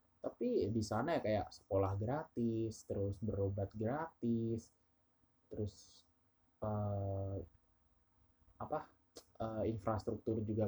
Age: 20-39